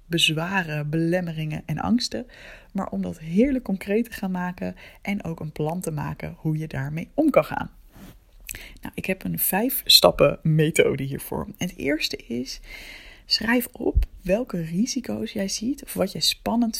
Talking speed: 155 wpm